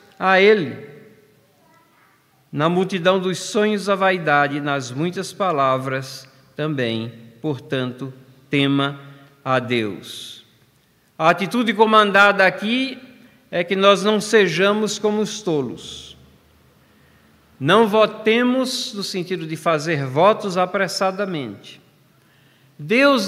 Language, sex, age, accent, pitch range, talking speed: Portuguese, male, 50-69, Brazilian, 150-210 Hz, 95 wpm